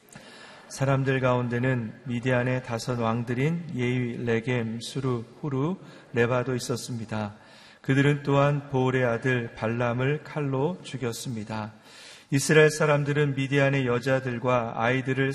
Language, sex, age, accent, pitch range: Korean, male, 40-59, native, 120-140 Hz